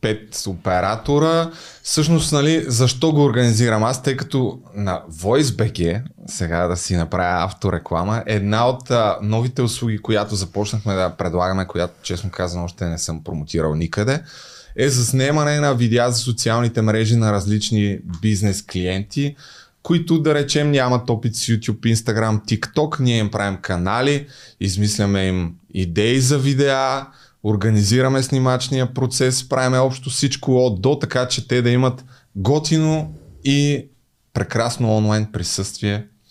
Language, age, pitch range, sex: Bulgarian, 20-39, 100-135 Hz, male